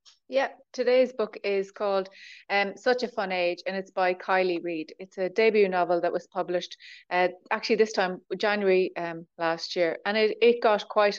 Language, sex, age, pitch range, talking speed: English, female, 30-49, 180-215 Hz, 190 wpm